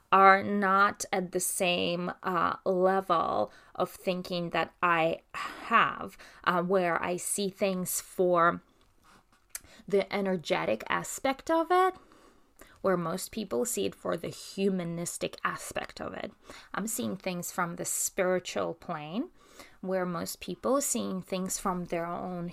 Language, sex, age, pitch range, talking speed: English, female, 20-39, 180-205 Hz, 130 wpm